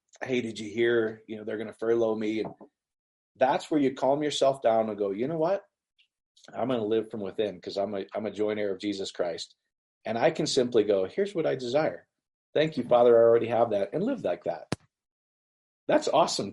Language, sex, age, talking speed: English, male, 40-59, 220 wpm